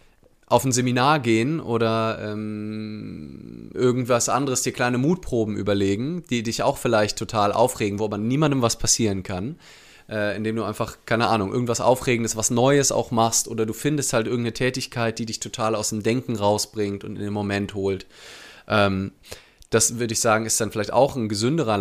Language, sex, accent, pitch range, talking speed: German, male, German, 105-130 Hz, 180 wpm